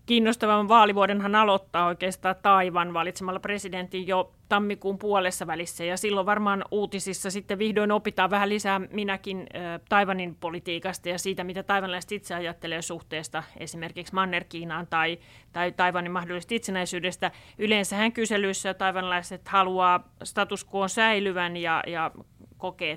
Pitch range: 180-210 Hz